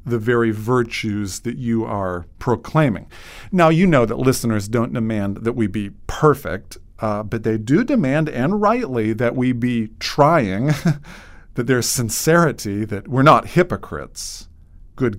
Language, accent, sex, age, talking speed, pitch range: English, American, male, 50-69, 145 wpm, 110-145 Hz